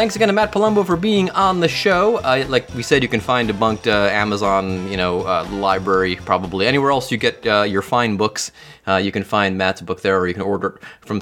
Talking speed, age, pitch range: 250 wpm, 30-49, 95-125 Hz